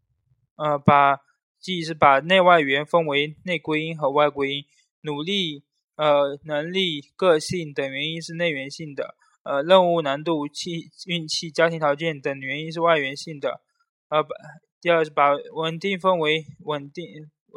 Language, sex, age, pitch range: Chinese, male, 20-39, 145-170 Hz